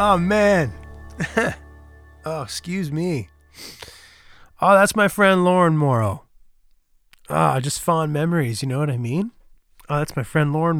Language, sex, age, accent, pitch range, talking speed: English, male, 30-49, American, 120-165 Hz, 140 wpm